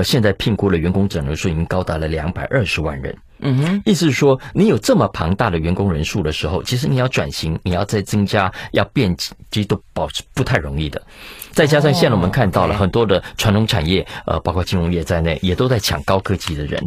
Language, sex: Chinese, male